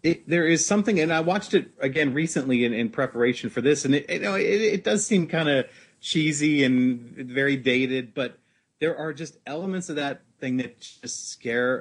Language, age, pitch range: English, 30-49, 120-155 Hz